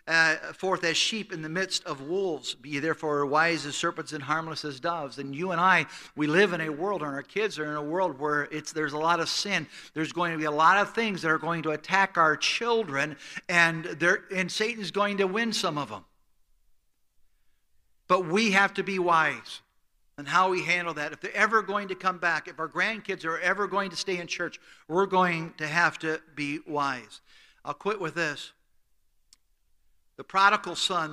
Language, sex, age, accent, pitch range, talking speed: English, male, 60-79, American, 145-185 Hz, 205 wpm